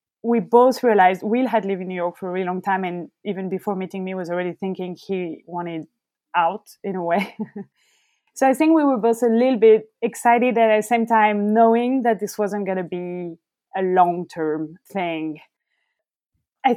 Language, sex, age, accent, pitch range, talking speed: English, female, 20-39, French, 185-240 Hz, 185 wpm